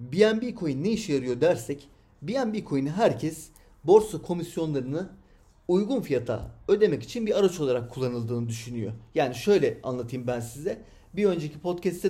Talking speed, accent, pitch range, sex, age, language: 140 wpm, native, 120-180 Hz, male, 40-59, Turkish